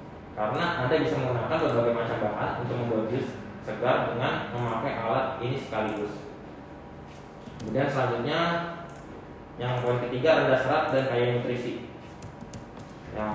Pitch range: 115-130 Hz